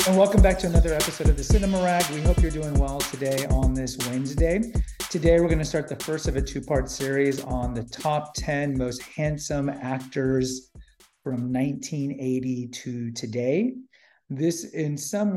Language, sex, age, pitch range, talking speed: English, male, 40-59, 130-160 Hz, 170 wpm